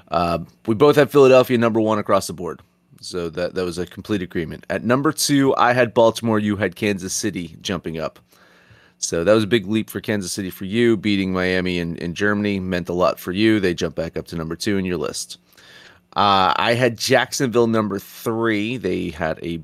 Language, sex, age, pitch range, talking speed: English, male, 30-49, 90-110 Hz, 215 wpm